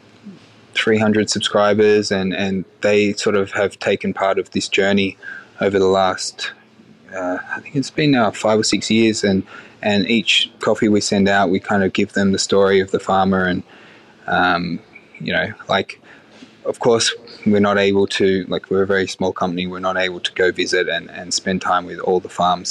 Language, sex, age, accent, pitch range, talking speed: English, male, 20-39, Australian, 95-110 Hz, 195 wpm